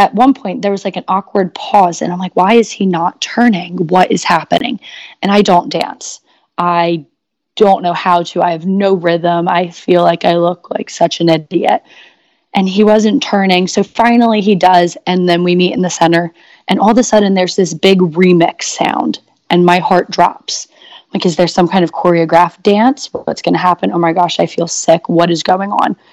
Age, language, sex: 20-39, English, female